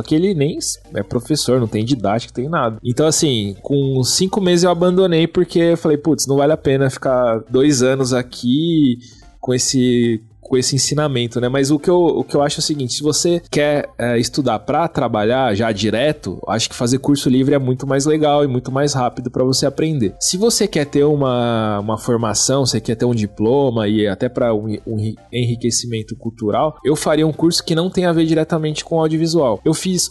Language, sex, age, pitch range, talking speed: Portuguese, male, 20-39, 120-150 Hz, 205 wpm